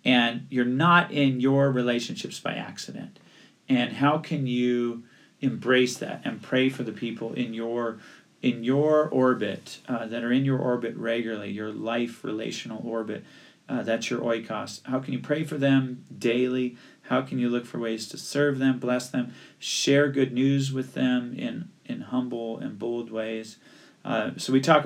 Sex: male